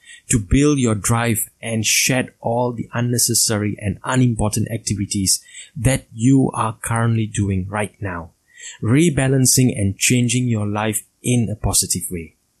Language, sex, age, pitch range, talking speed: English, male, 20-39, 100-125 Hz, 135 wpm